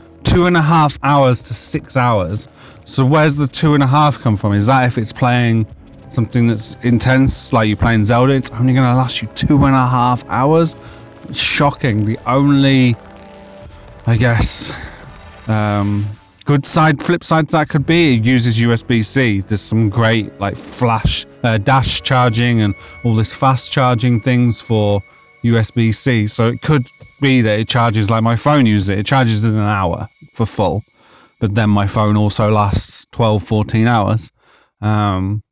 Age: 30-49